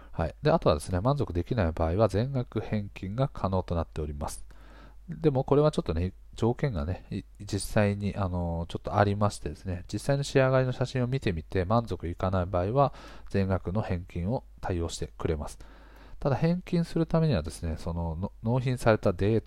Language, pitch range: Japanese, 90-120 Hz